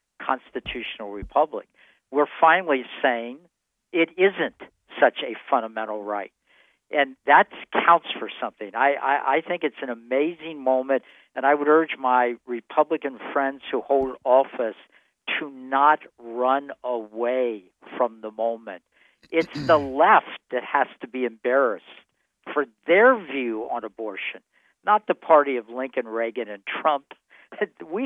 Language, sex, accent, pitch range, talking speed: English, male, American, 125-185 Hz, 135 wpm